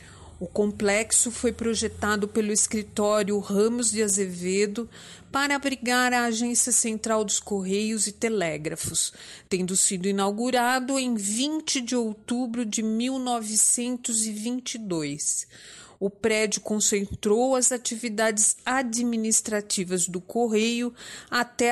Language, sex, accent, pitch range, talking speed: Portuguese, female, Brazilian, 205-245 Hz, 100 wpm